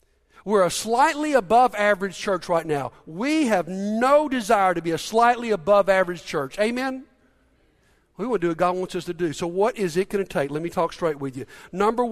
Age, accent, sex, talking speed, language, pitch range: 50-69, American, male, 220 wpm, English, 185-265 Hz